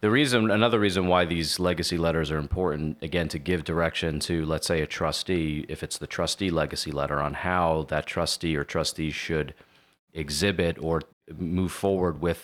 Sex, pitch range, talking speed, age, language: male, 75-90 Hz, 180 wpm, 40-59, English